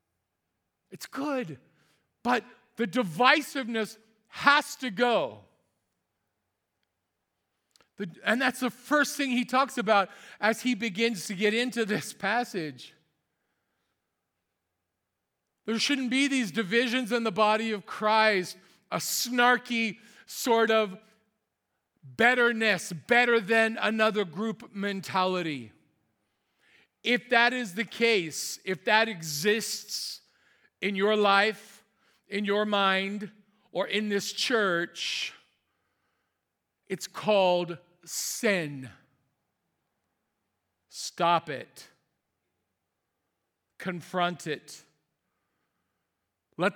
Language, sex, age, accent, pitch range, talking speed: English, male, 40-59, American, 175-230 Hz, 90 wpm